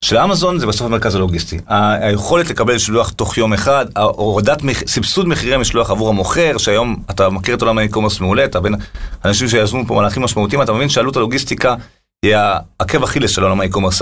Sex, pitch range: male, 105-140 Hz